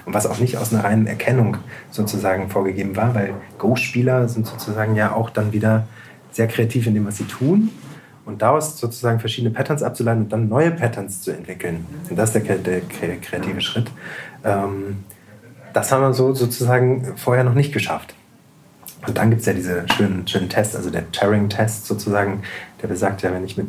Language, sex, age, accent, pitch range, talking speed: German, male, 30-49, German, 100-125 Hz, 180 wpm